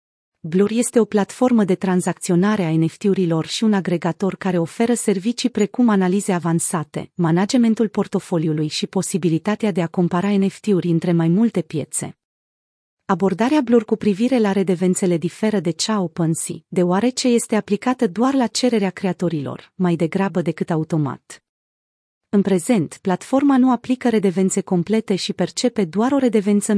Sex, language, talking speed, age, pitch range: female, Romanian, 140 wpm, 30-49, 175-220 Hz